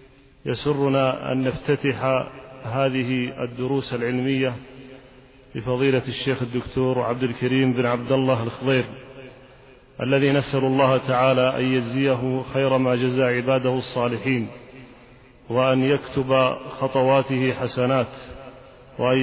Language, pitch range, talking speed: Arabic, 125-135 Hz, 95 wpm